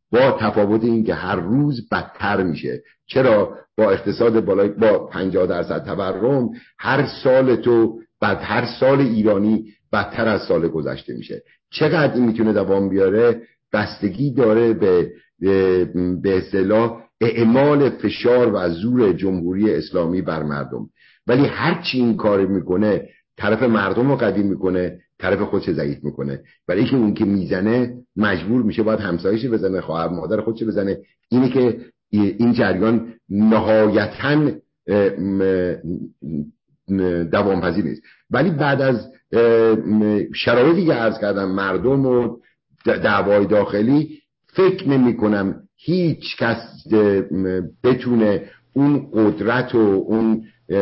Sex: male